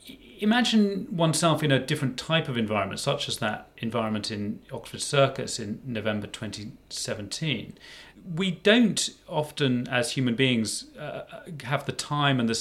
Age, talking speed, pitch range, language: 30-49, 145 wpm, 110-145 Hz, English